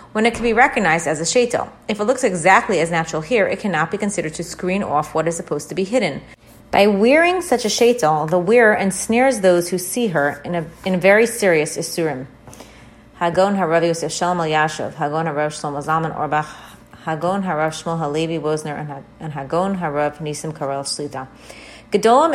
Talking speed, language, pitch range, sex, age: 145 wpm, English, 155-205 Hz, female, 30-49